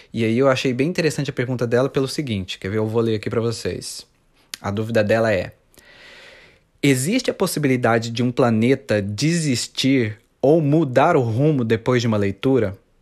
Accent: Brazilian